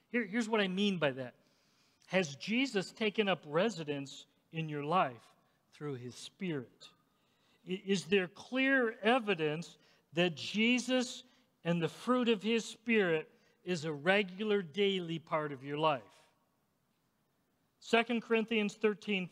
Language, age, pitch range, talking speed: English, 50-69, 175-235 Hz, 125 wpm